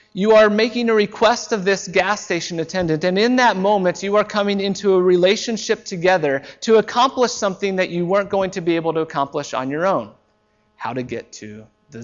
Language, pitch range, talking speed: English, 140-210 Hz, 205 wpm